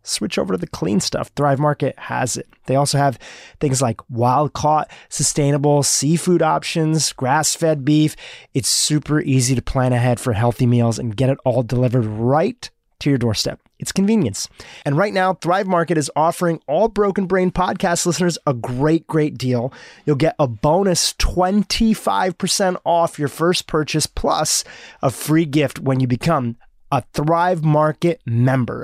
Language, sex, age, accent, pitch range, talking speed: English, male, 30-49, American, 130-175 Hz, 160 wpm